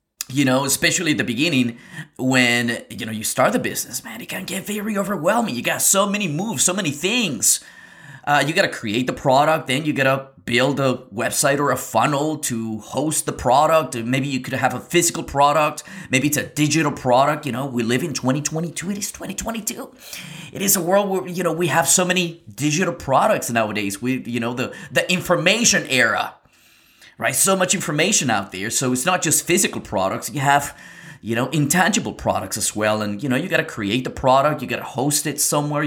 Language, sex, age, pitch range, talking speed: English, male, 20-39, 125-175 Hz, 210 wpm